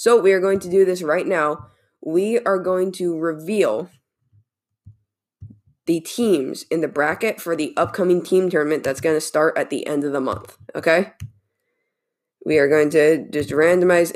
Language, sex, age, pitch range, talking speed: English, female, 20-39, 155-190 Hz, 175 wpm